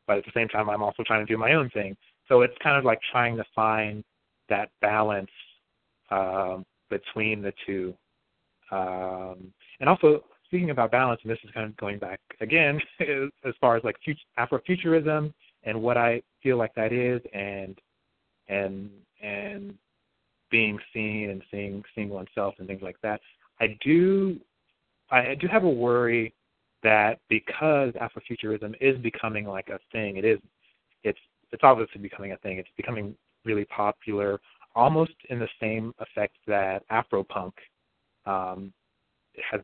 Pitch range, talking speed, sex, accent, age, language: 100-120 Hz, 155 wpm, male, American, 30-49, English